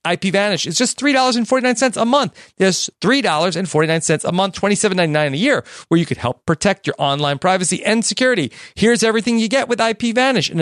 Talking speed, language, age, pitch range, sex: 175 wpm, English, 40-59, 165-225 Hz, male